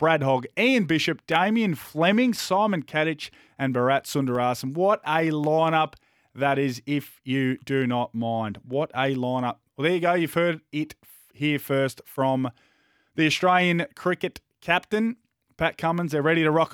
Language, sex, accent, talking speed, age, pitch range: English, male, Australian, 160 wpm, 20-39, 125-165 Hz